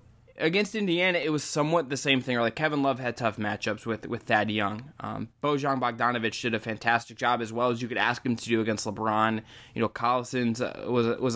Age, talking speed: 20-39, 225 wpm